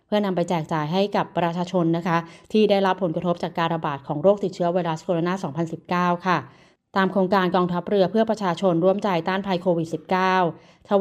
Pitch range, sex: 170-200 Hz, female